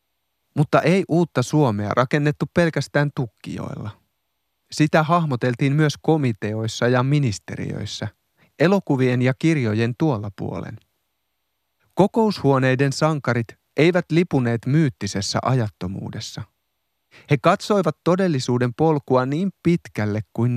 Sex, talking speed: male, 90 wpm